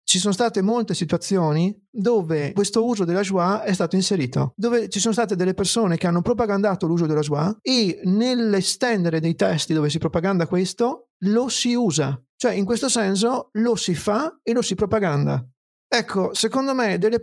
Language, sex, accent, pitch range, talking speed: Italian, male, native, 175-215 Hz, 180 wpm